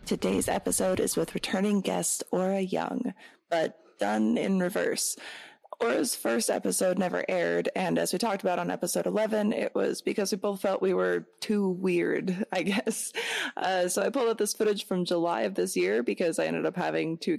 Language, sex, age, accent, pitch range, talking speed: English, female, 20-39, American, 180-225 Hz, 190 wpm